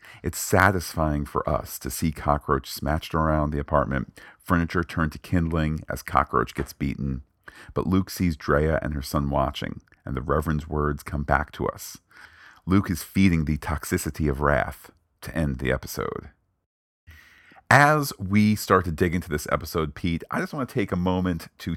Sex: male